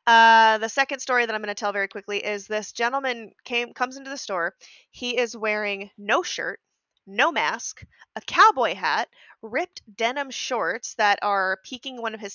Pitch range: 200-245 Hz